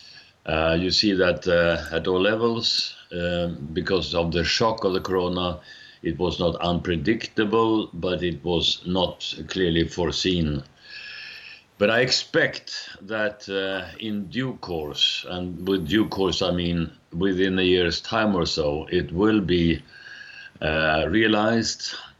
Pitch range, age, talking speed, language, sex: 85-105 Hz, 60-79, 140 wpm, English, male